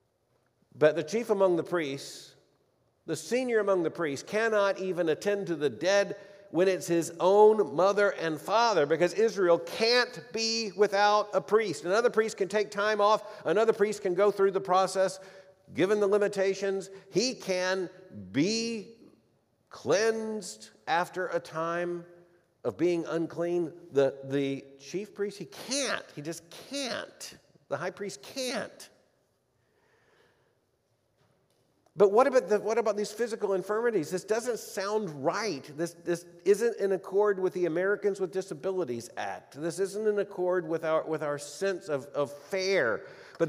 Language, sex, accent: English, male, American